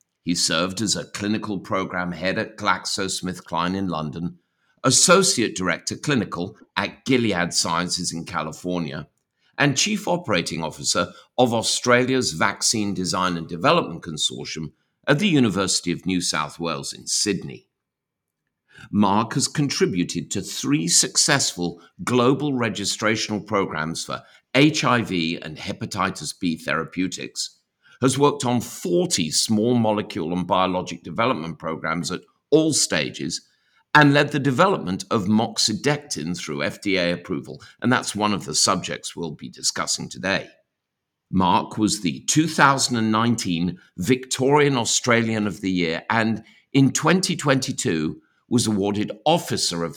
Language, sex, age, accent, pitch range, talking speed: English, male, 50-69, British, 90-130 Hz, 120 wpm